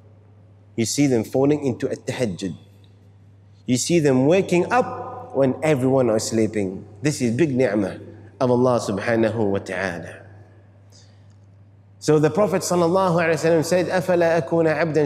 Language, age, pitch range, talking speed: English, 30-49, 100-170 Hz, 130 wpm